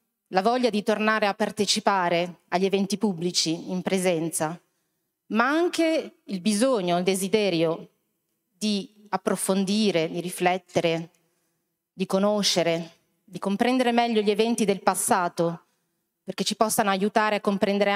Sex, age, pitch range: female, 30-49, 175-210 Hz